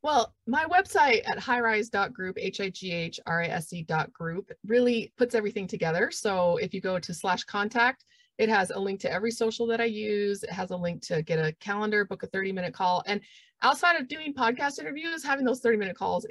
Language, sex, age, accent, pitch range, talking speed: English, female, 30-49, American, 180-235 Hz, 180 wpm